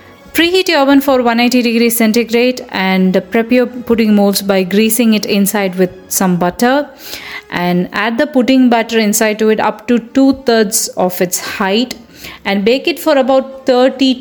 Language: Tamil